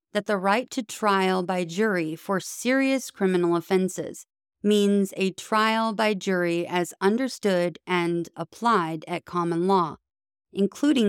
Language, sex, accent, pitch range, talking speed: English, female, American, 175-220 Hz, 130 wpm